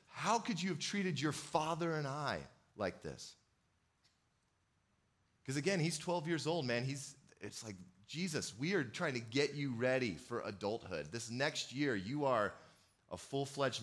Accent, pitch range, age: American, 100-145 Hz, 30-49